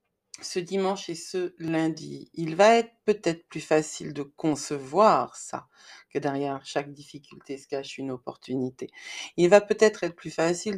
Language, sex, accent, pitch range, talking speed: French, female, French, 160-225 Hz, 155 wpm